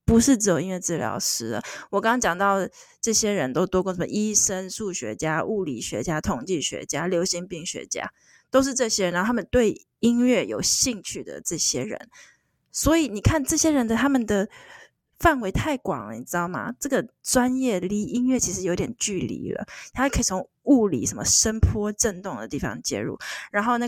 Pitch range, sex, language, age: 185-245 Hz, female, Chinese, 20-39